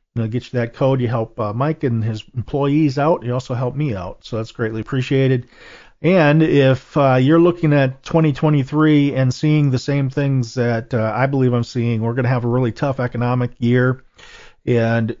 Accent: American